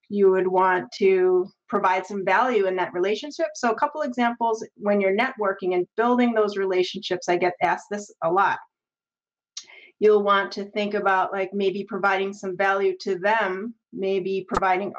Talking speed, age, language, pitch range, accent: 165 wpm, 30-49, English, 185-230 Hz, American